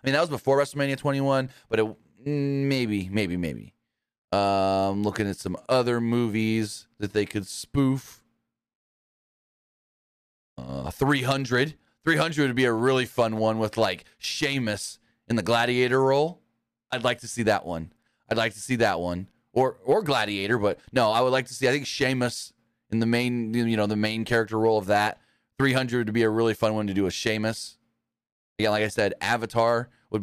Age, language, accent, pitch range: 30-49, English, American, 105-125 Hz